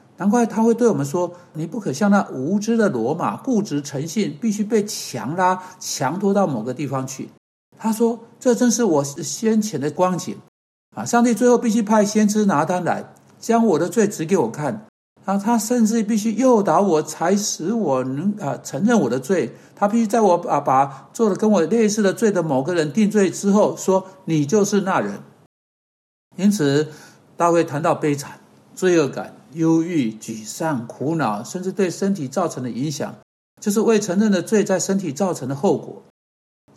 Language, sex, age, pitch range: Chinese, male, 60-79, 155-215 Hz